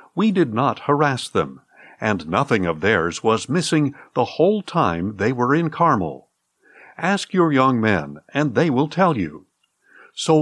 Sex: male